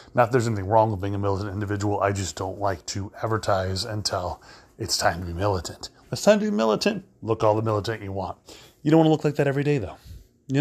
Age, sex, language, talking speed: 30-49, male, English, 255 wpm